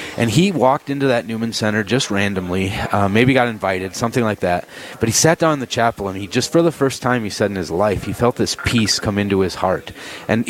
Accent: American